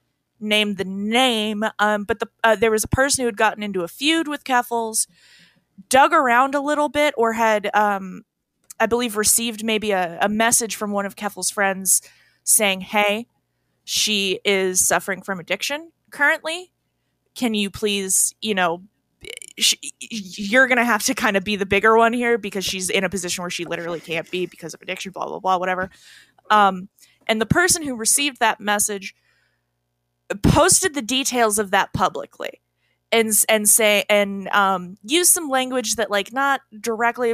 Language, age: English, 20-39